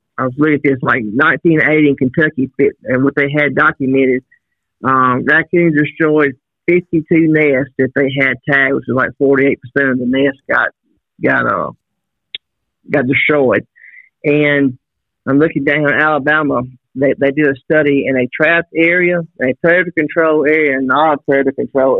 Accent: American